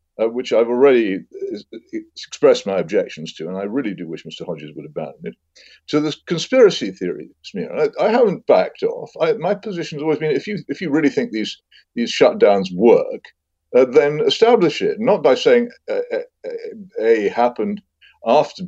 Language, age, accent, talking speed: English, 50-69, British, 180 wpm